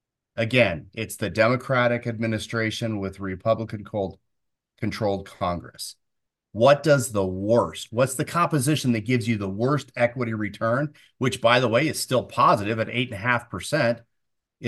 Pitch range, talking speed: 105-125 Hz, 125 wpm